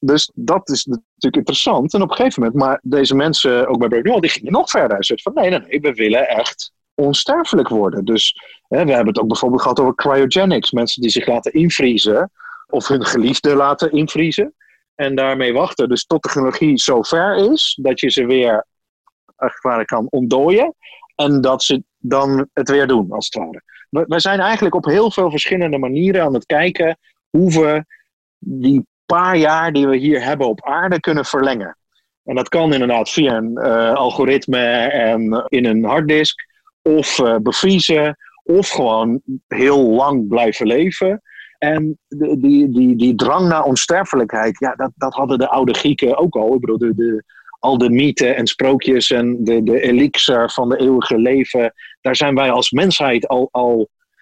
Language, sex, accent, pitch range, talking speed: English, male, Dutch, 125-165 Hz, 180 wpm